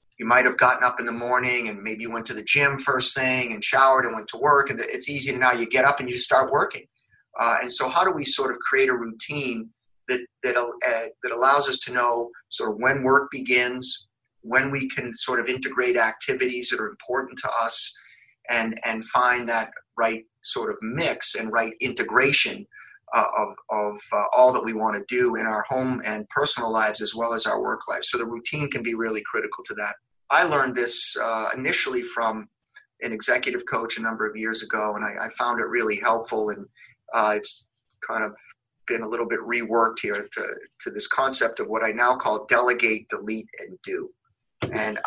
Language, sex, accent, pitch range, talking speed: English, male, American, 115-135 Hz, 210 wpm